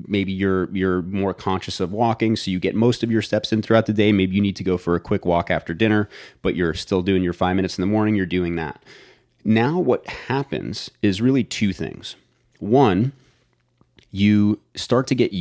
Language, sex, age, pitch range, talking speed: English, male, 30-49, 90-110 Hz, 210 wpm